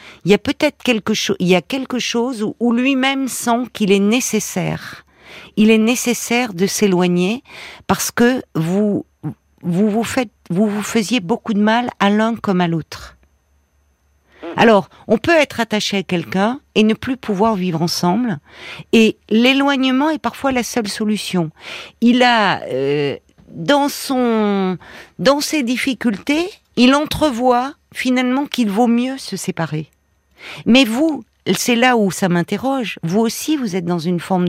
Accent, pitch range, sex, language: French, 180-245 Hz, female, French